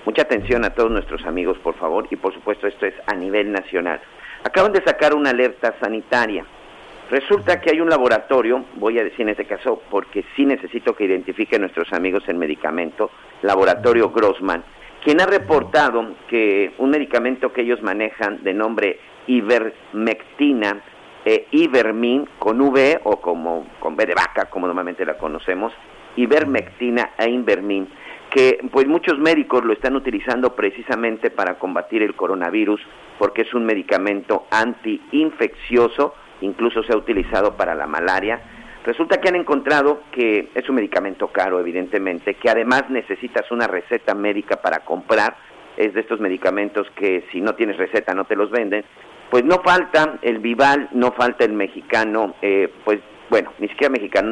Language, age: Spanish, 50-69